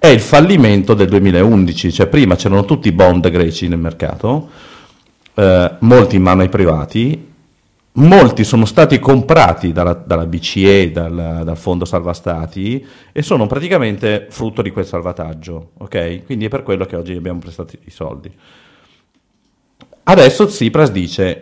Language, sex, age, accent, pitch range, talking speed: Italian, male, 40-59, native, 90-125 Hz, 145 wpm